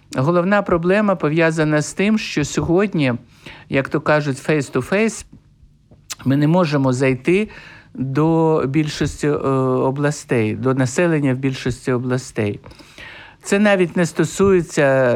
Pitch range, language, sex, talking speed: 135-180 Hz, Ukrainian, male, 105 wpm